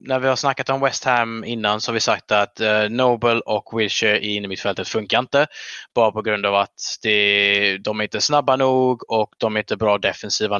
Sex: male